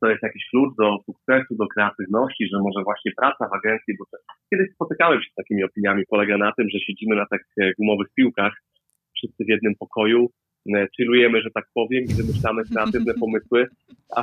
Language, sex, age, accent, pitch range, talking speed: Polish, male, 30-49, native, 105-125 Hz, 195 wpm